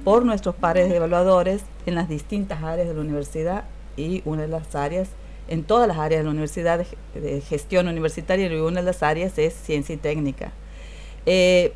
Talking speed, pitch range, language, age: 195 wpm, 160-205 Hz, Spanish, 40-59